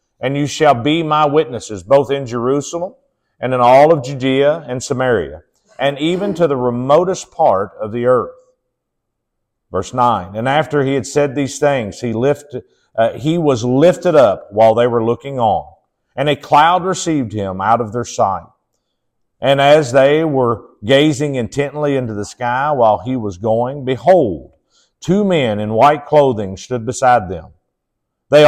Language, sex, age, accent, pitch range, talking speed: English, male, 50-69, American, 120-150 Hz, 165 wpm